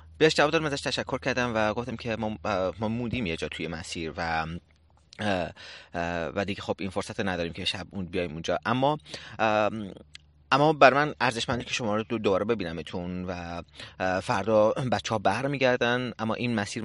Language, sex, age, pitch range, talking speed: Persian, male, 30-49, 90-120 Hz, 150 wpm